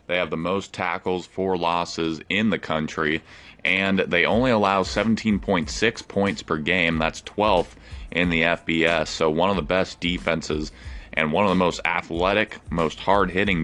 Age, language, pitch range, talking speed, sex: 30-49, English, 80-90 Hz, 165 wpm, male